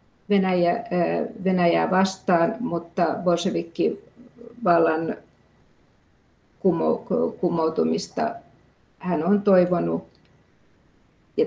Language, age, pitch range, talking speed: Finnish, 50-69, 160-205 Hz, 60 wpm